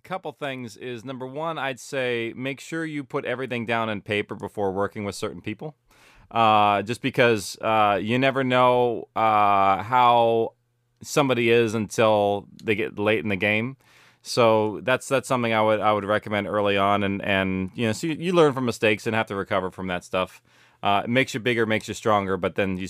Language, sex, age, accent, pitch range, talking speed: English, male, 30-49, American, 105-130 Hz, 200 wpm